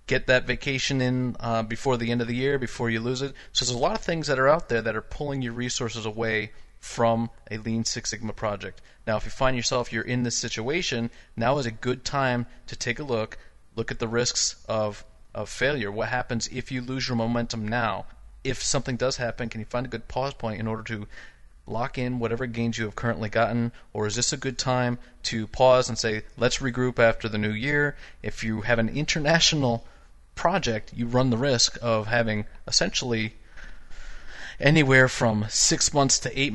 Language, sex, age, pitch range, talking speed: English, male, 30-49, 110-125 Hz, 210 wpm